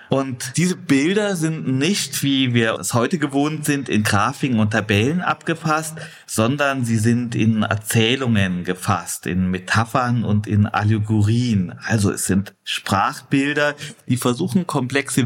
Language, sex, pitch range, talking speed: German, male, 110-140 Hz, 135 wpm